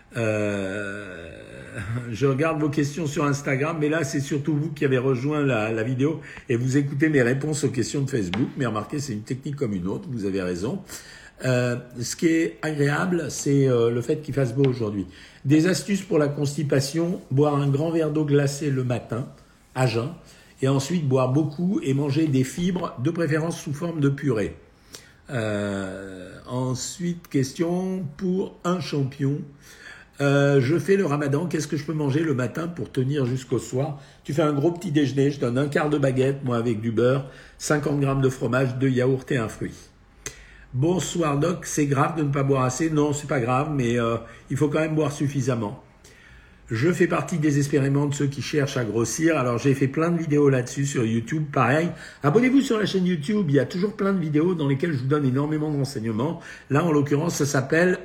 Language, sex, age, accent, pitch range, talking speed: French, male, 50-69, French, 130-155 Hz, 205 wpm